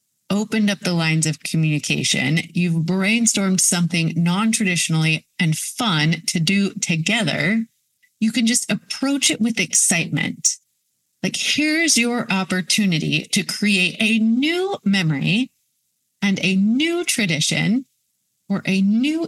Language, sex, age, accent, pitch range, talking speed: English, female, 30-49, American, 170-240 Hz, 120 wpm